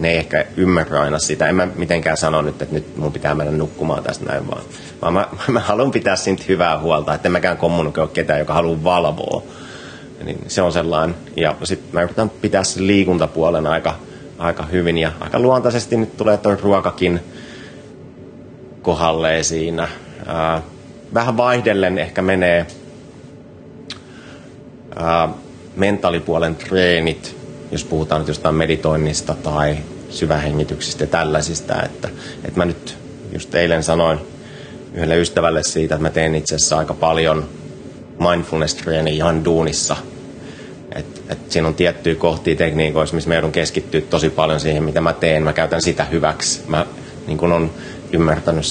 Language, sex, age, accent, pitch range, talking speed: Finnish, male, 30-49, native, 80-85 Hz, 145 wpm